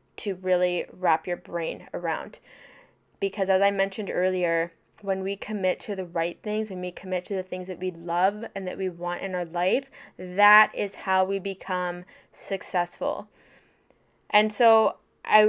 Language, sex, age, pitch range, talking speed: English, female, 10-29, 185-215 Hz, 165 wpm